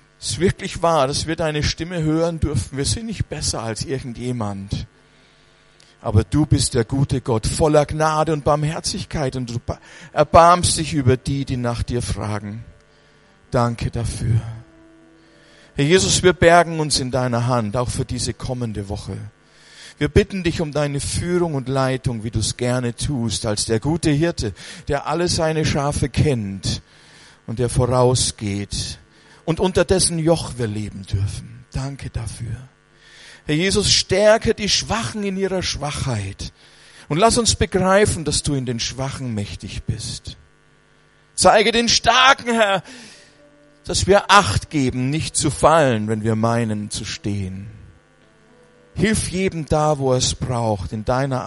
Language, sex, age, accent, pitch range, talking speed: German, male, 50-69, German, 115-155 Hz, 150 wpm